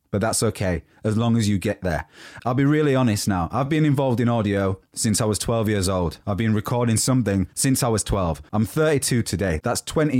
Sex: male